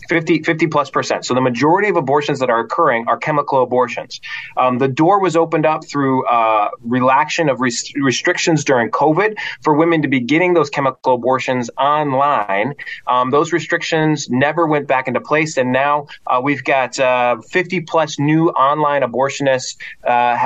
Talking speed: 170 wpm